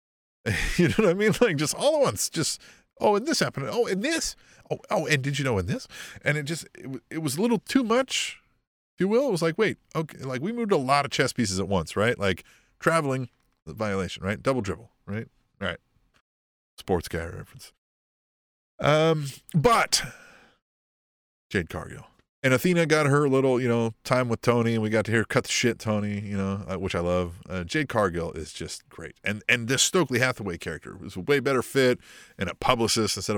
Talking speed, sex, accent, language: 210 wpm, male, American, English